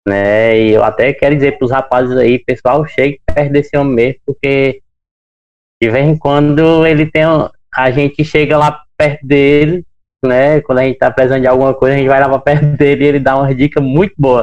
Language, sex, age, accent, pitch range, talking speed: Portuguese, male, 20-39, Brazilian, 120-145 Hz, 220 wpm